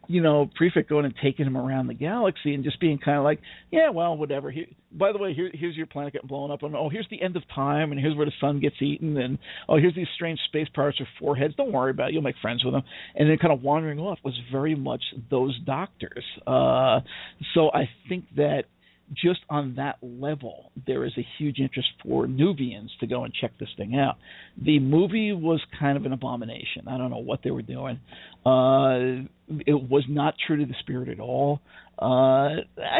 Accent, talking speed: American, 220 wpm